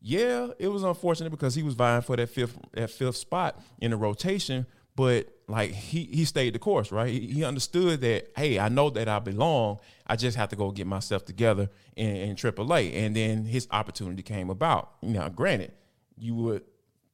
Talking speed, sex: 195 wpm, male